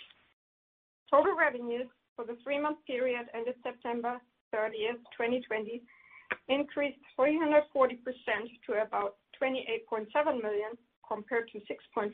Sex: female